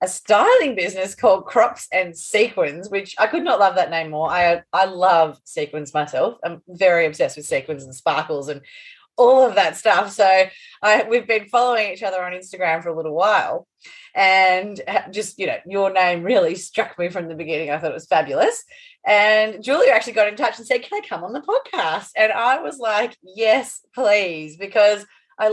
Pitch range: 165-220 Hz